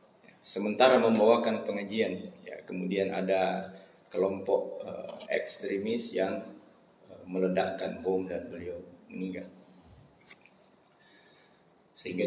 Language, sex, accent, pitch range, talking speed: Indonesian, male, native, 95-120 Hz, 85 wpm